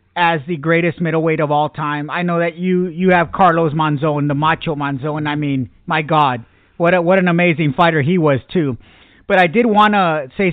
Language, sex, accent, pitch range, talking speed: English, male, American, 150-180 Hz, 210 wpm